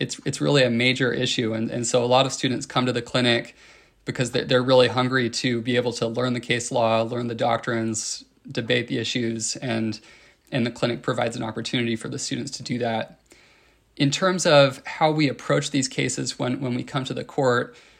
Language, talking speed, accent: English, 210 wpm, American